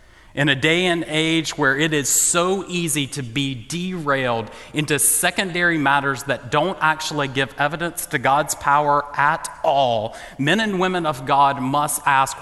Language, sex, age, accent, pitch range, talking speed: English, male, 30-49, American, 125-160 Hz, 160 wpm